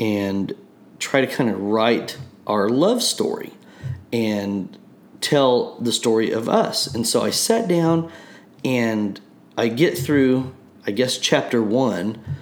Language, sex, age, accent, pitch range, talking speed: English, male, 40-59, American, 105-140 Hz, 135 wpm